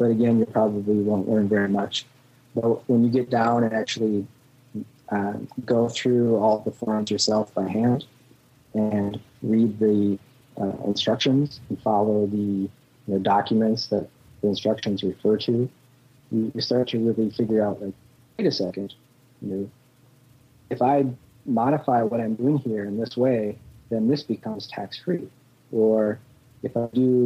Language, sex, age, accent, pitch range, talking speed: English, male, 40-59, American, 105-125 Hz, 155 wpm